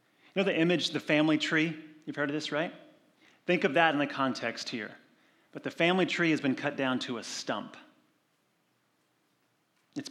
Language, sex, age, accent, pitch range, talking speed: English, male, 30-49, American, 125-155 Hz, 185 wpm